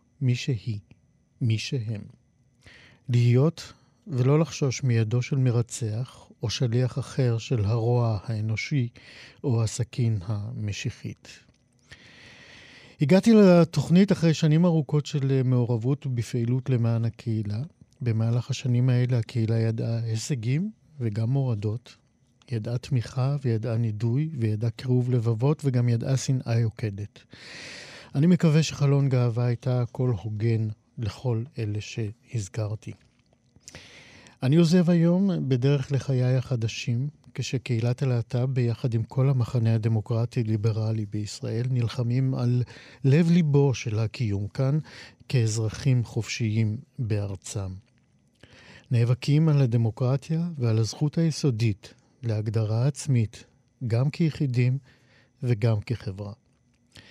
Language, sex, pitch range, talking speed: Hebrew, male, 115-135 Hz, 100 wpm